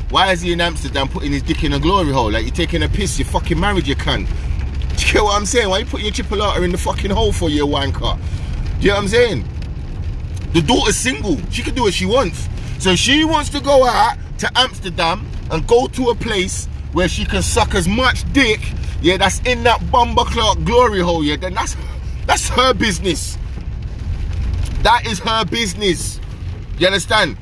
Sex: male